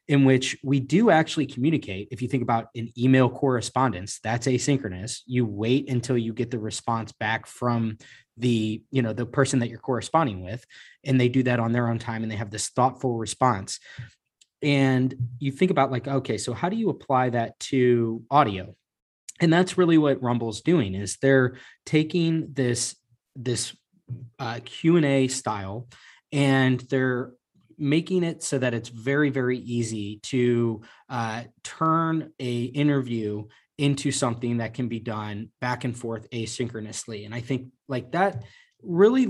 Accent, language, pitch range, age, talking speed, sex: American, English, 115-140 Hz, 20-39, 160 wpm, male